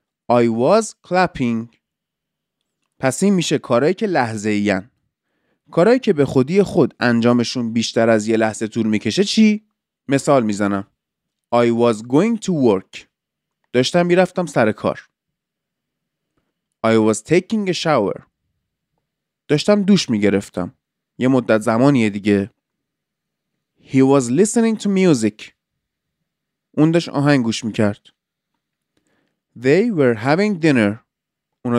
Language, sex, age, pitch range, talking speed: Persian, male, 30-49, 115-185 Hz, 115 wpm